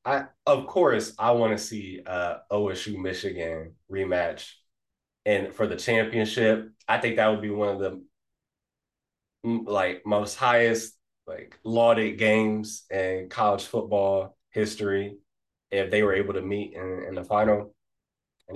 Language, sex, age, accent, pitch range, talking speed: English, male, 20-39, American, 95-110 Hz, 140 wpm